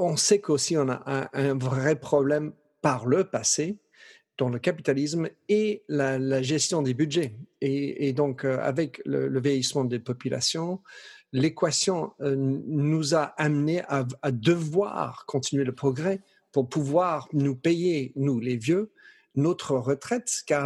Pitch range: 130-165 Hz